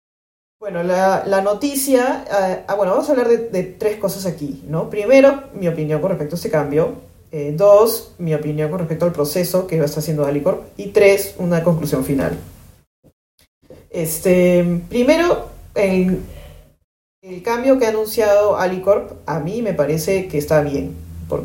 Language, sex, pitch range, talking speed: English, female, 145-190 Hz, 160 wpm